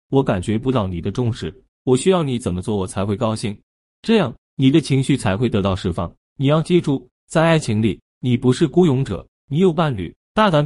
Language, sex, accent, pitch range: Chinese, male, native, 100-150 Hz